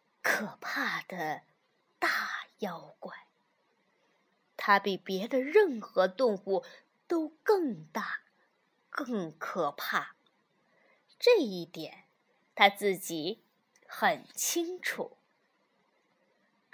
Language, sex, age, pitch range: Chinese, female, 20-39, 230-360 Hz